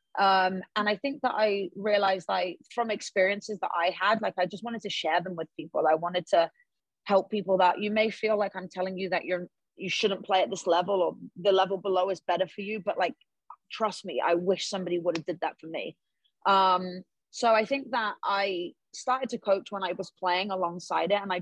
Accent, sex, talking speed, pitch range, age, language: British, female, 225 wpm, 175-210 Hz, 30-49, English